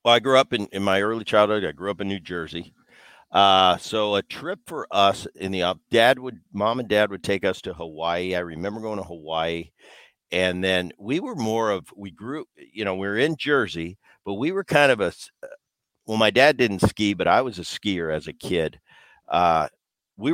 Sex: male